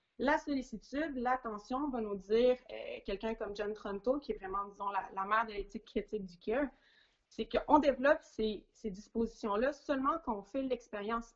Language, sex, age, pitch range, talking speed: French, female, 30-49, 220-285 Hz, 180 wpm